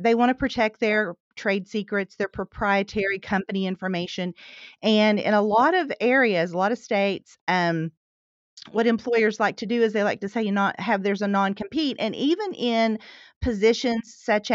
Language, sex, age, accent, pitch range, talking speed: English, female, 40-59, American, 190-220 Hz, 175 wpm